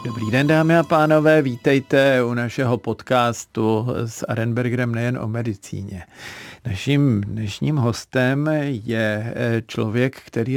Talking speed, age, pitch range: 115 wpm, 50-69, 110-130 Hz